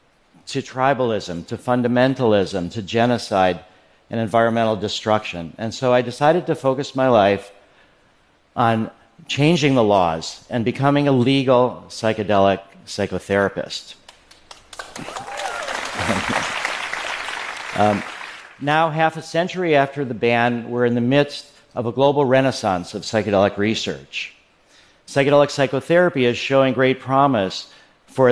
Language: English